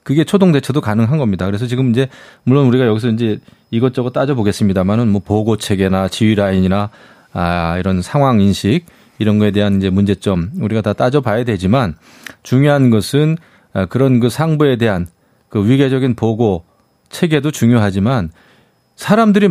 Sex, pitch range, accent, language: male, 105-150 Hz, native, Korean